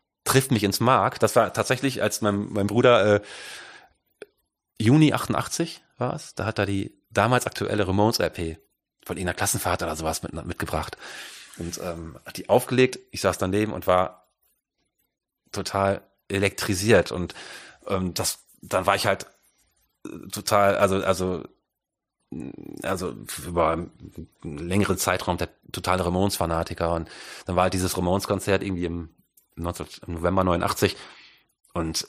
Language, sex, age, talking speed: German, male, 30-49, 135 wpm